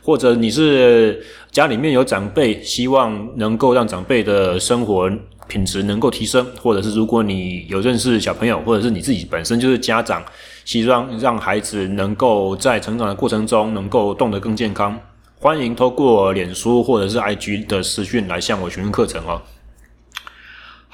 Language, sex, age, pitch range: Chinese, male, 20-39, 95-120 Hz